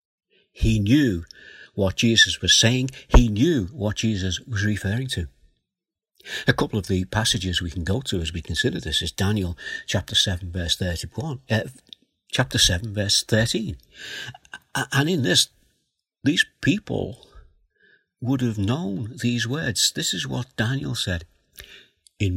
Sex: male